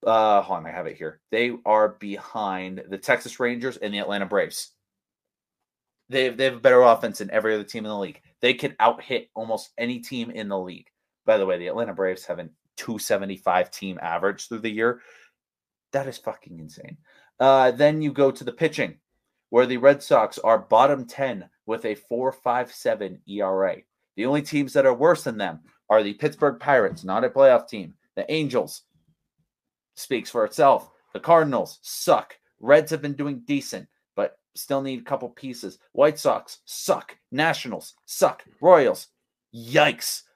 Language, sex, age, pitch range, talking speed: English, male, 30-49, 110-145 Hz, 175 wpm